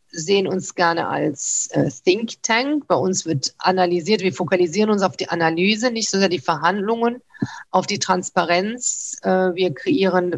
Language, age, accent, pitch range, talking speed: German, 50-69, German, 175-200 Hz, 160 wpm